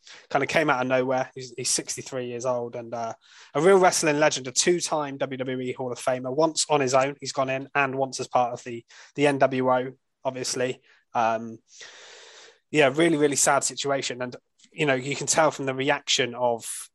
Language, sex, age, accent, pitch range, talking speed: English, male, 20-39, British, 125-155 Hz, 195 wpm